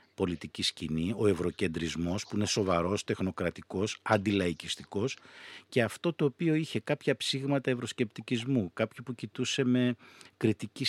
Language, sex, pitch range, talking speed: Greek, male, 95-130 Hz, 120 wpm